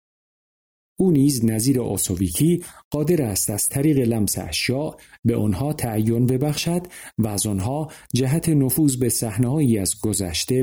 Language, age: Persian, 50-69